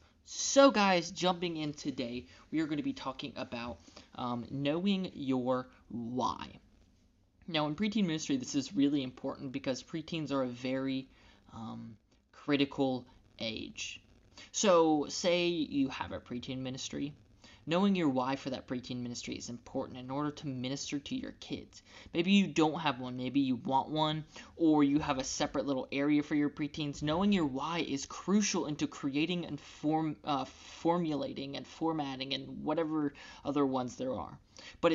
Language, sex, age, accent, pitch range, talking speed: English, male, 20-39, American, 125-165 Hz, 160 wpm